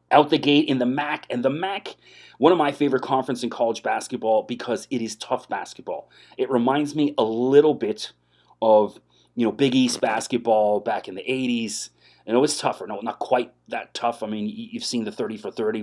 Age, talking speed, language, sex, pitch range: 30-49, 210 wpm, English, male, 110-130 Hz